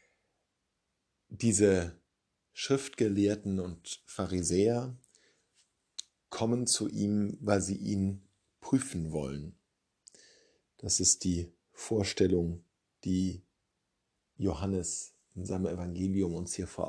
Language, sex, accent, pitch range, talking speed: German, male, German, 95-115 Hz, 85 wpm